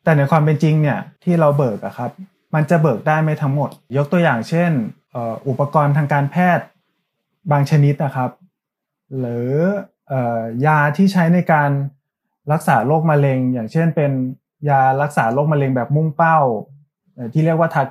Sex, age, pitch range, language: male, 20-39, 135-170 Hz, Thai